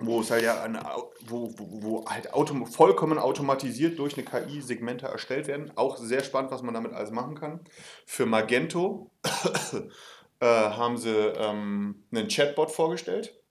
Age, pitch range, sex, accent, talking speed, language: 30-49, 115-155 Hz, male, German, 160 wpm, German